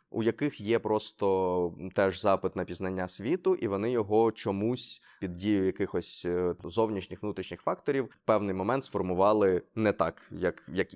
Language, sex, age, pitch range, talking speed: Ukrainian, male, 20-39, 95-125 Hz, 150 wpm